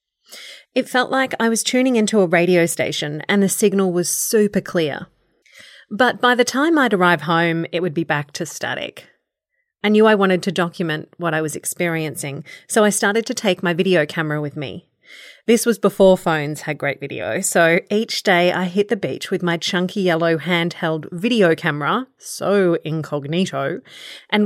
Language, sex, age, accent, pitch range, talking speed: English, female, 30-49, Australian, 165-220 Hz, 180 wpm